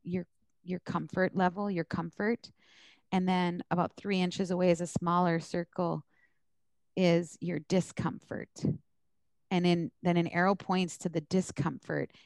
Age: 30-49